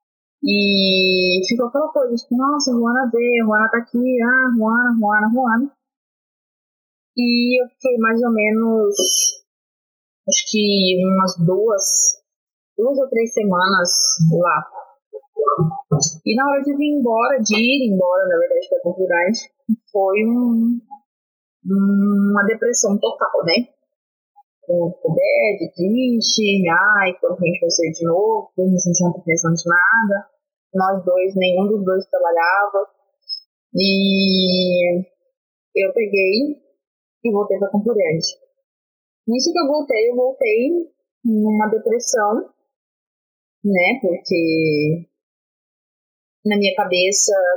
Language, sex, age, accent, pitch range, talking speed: Portuguese, female, 30-49, Brazilian, 185-260 Hz, 120 wpm